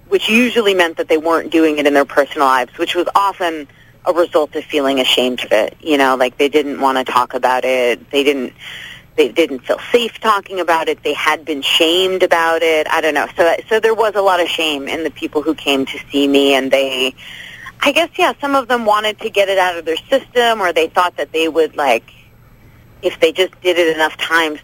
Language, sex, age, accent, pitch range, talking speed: English, female, 30-49, American, 145-200 Hz, 235 wpm